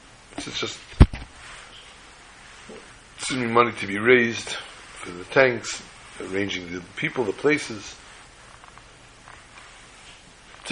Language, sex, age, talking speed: English, male, 60-79, 85 wpm